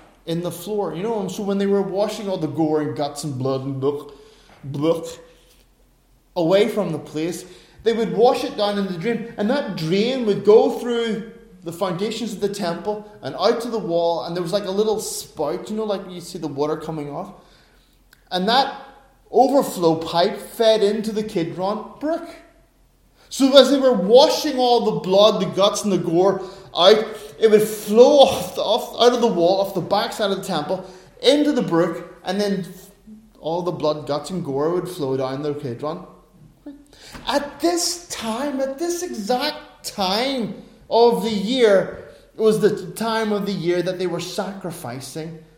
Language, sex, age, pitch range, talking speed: English, male, 30-49, 170-230 Hz, 185 wpm